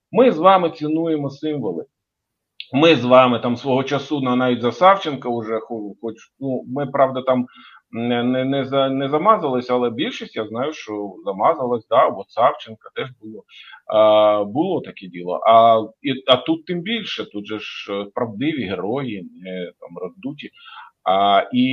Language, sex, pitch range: Ukrainian, male, 115-150 Hz